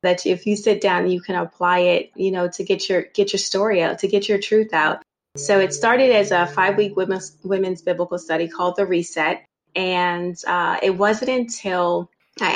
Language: English